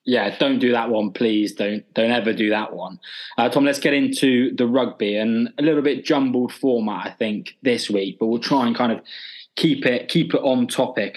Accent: British